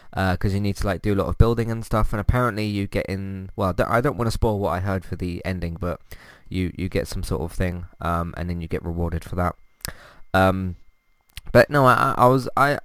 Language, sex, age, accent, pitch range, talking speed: English, male, 20-39, British, 90-115 Hz, 250 wpm